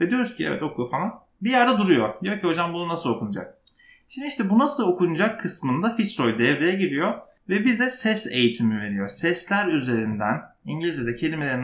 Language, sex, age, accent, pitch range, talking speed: Turkish, male, 30-49, native, 125-210 Hz, 170 wpm